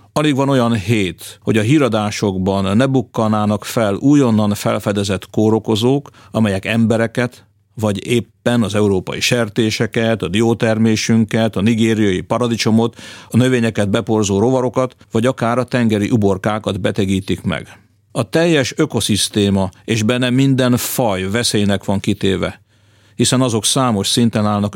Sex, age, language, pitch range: male, 50-69, Hungarian, 100-120 Hz